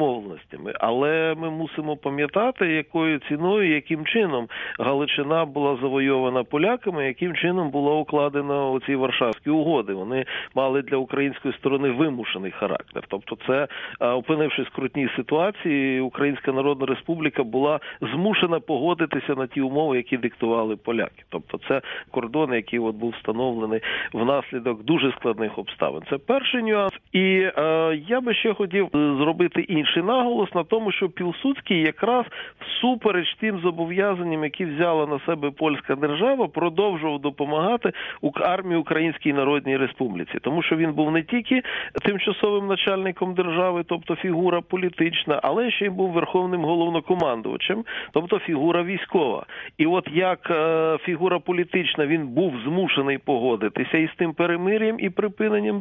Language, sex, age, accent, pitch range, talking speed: Ukrainian, male, 40-59, native, 140-185 Hz, 135 wpm